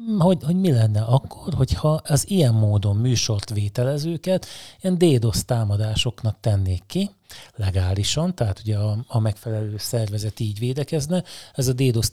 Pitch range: 110-125 Hz